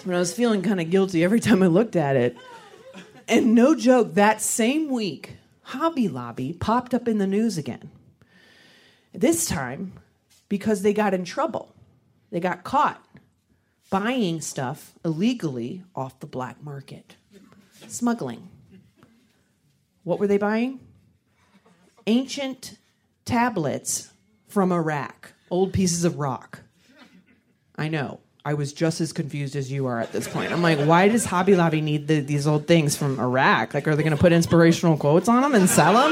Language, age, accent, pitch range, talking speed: English, 40-59, American, 155-215 Hz, 155 wpm